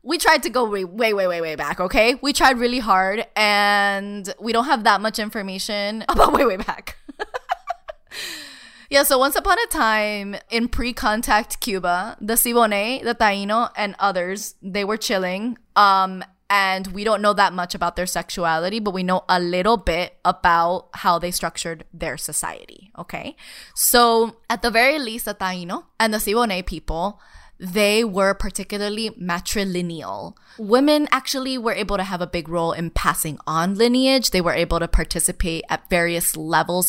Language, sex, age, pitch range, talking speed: English, female, 10-29, 185-240 Hz, 170 wpm